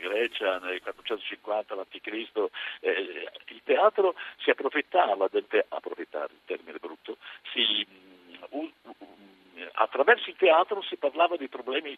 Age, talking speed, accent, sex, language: 50-69, 120 wpm, native, male, Italian